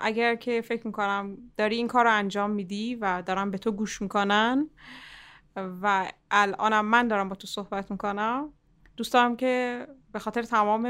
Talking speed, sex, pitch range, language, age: 165 wpm, female, 190-230 Hz, Persian, 20-39